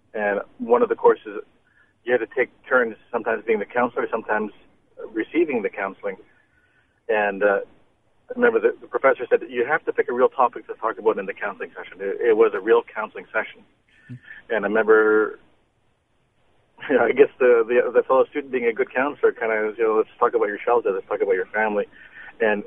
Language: English